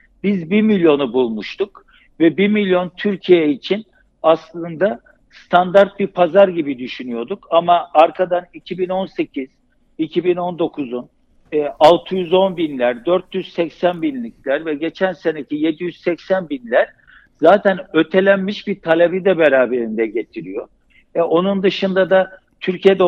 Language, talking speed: Turkish, 100 wpm